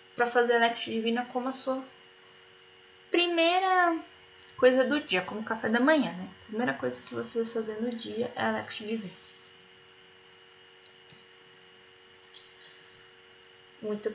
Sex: female